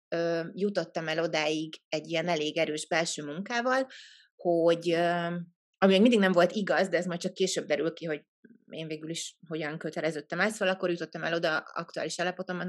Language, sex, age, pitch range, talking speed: Hungarian, female, 30-49, 165-205 Hz, 180 wpm